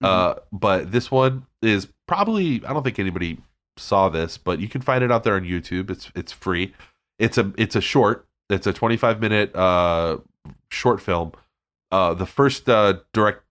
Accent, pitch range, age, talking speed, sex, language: American, 90-110 Hz, 30-49, 180 wpm, male, English